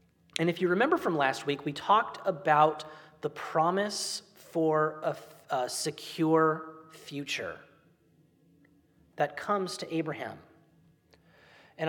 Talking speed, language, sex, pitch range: 115 wpm, English, male, 155-190 Hz